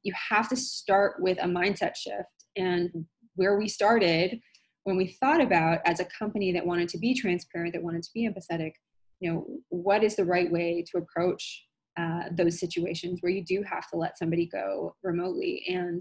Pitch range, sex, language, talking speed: 175-200 Hz, female, English, 190 wpm